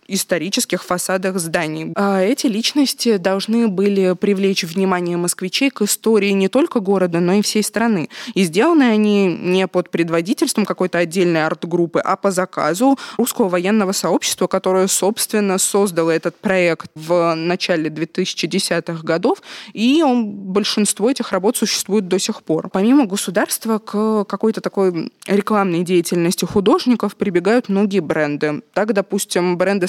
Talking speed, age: 135 wpm, 20-39